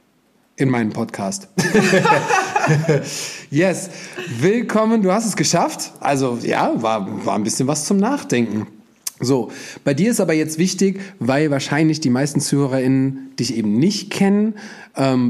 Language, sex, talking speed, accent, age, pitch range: German, male, 135 wpm, German, 30-49, 130-175 Hz